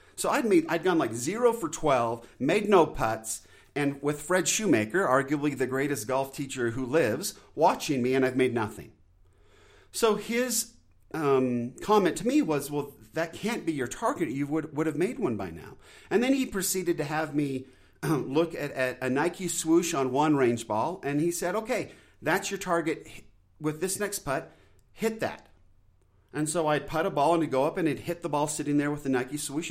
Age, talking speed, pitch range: 40-59, 205 wpm, 130-175 Hz